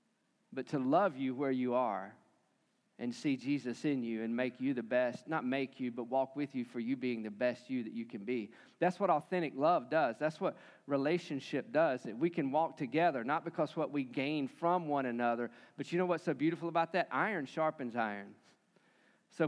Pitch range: 135-180 Hz